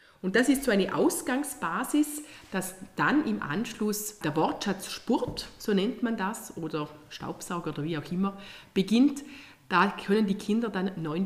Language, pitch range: German, 165-220 Hz